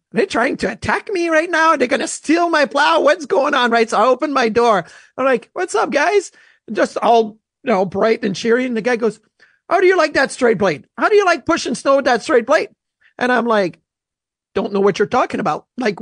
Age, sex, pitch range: 30-49, male, 200-270 Hz